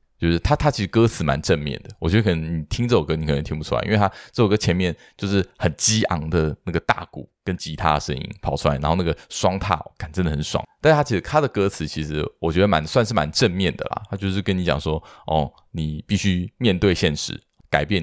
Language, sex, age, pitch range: Chinese, male, 20-39, 80-100 Hz